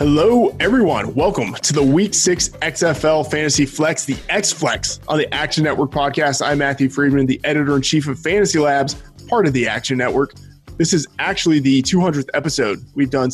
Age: 20-39